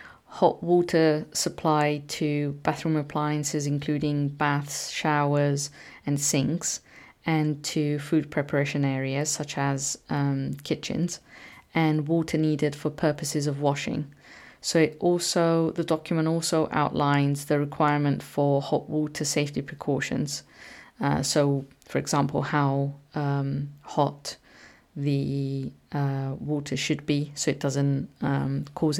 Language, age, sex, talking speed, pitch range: English, 30-49, female, 120 wpm, 140-160 Hz